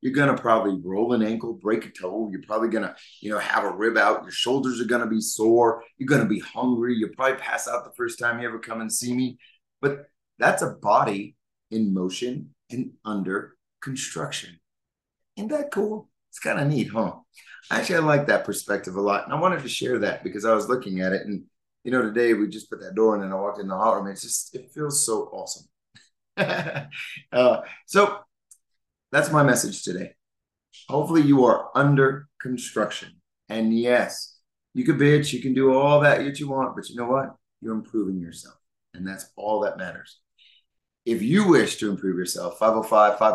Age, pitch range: 30-49, 100-130 Hz